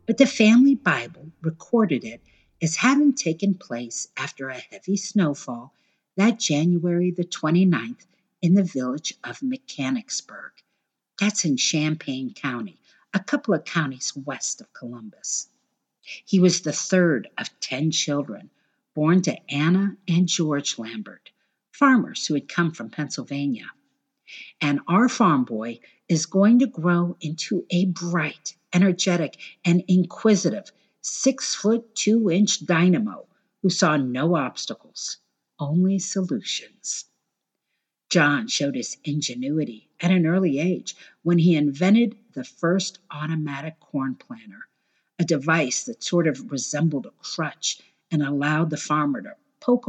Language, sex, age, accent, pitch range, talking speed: English, female, 50-69, American, 150-220 Hz, 130 wpm